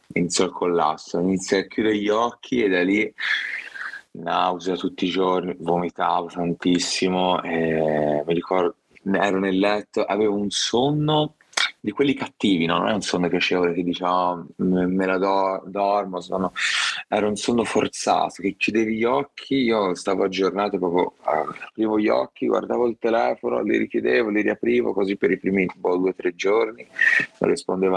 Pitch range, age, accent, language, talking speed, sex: 85-100 Hz, 30-49, native, Italian, 160 wpm, male